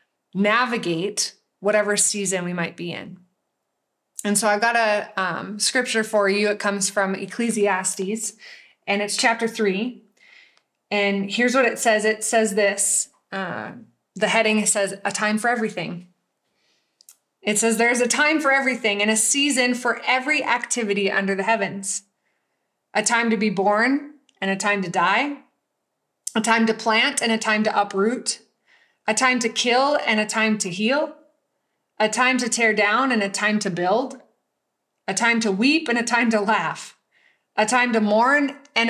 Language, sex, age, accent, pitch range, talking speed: English, female, 20-39, American, 205-235 Hz, 165 wpm